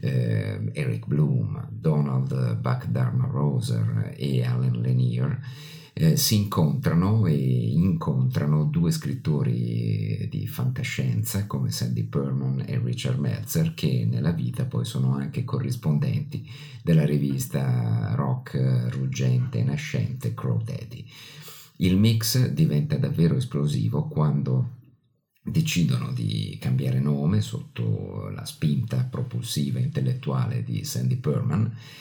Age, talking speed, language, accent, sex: 50-69, 105 wpm, Italian, native, male